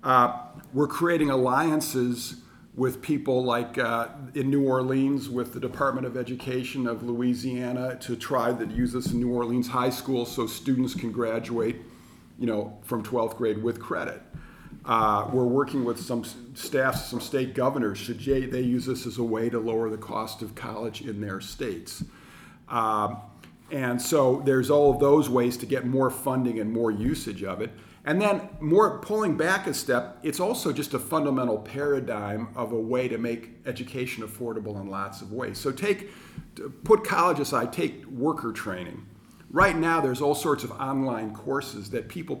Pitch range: 110-135 Hz